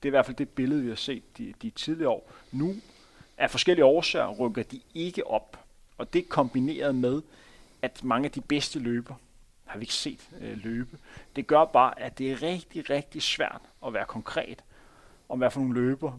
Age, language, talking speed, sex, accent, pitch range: 30-49, Danish, 195 wpm, male, native, 125-155 Hz